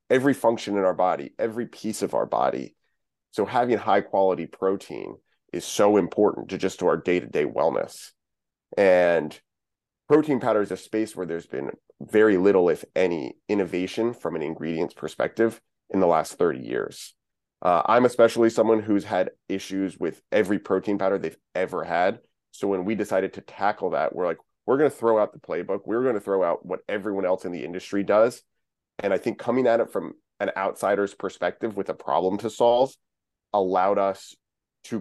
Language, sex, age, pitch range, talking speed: English, male, 30-49, 90-110 Hz, 180 wpm